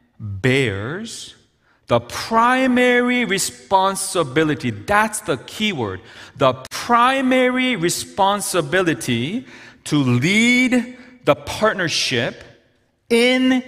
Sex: male